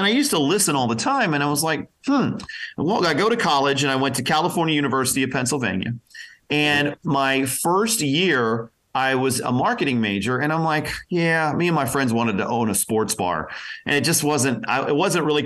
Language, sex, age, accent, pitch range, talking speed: English, male, 40-59, American, 120-160 Hz, 220 wpm